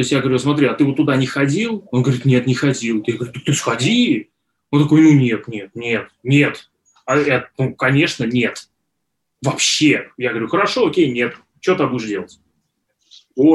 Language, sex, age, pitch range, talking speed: Russian, male, 20-39, 125-145 Hz, 195 wpm